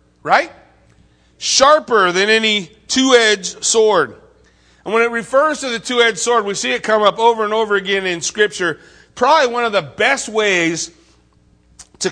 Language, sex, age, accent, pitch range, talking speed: English, male, 40-59, American, 155-220 Hz, 160 wpm